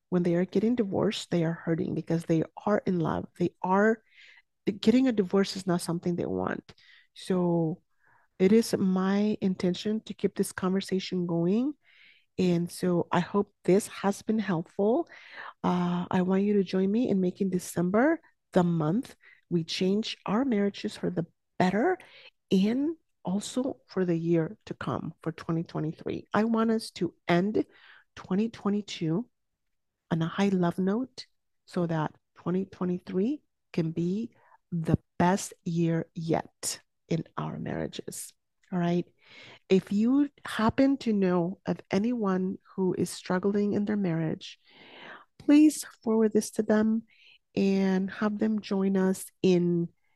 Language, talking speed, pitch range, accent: English, 140 wpm, 175-215 Hz, American